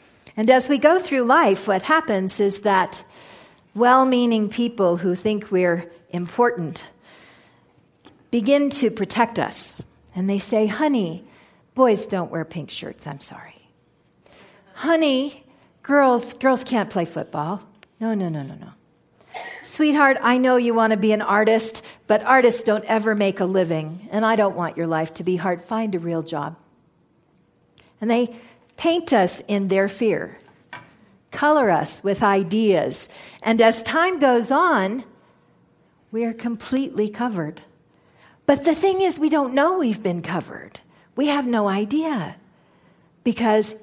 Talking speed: 145 wpm